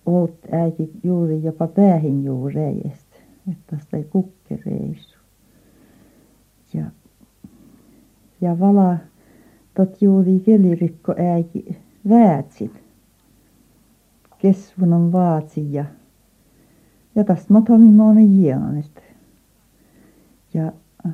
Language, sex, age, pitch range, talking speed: Finnish, female, 60-79, 150-185 Hz, 80 wpm